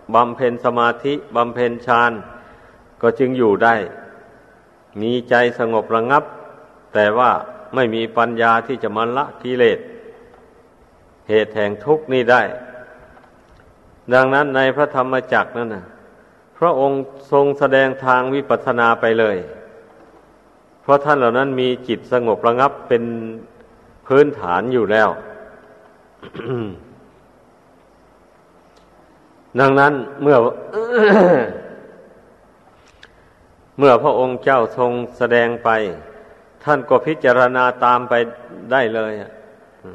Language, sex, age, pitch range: Thai, male, 50-69, 110-130 Hz